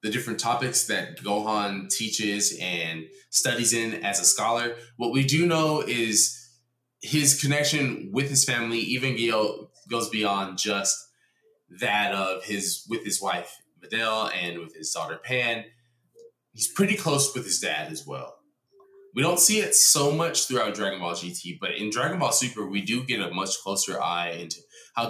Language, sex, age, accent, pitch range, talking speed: English, male, 20-39, American, 95-125 Hz, 170 wpm